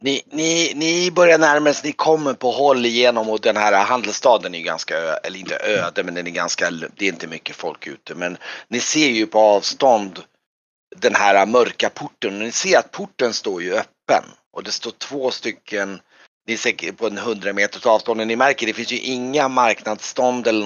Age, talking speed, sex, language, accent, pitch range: 30-49, 195 wpm, male, Swedish, native, 95-130 Hz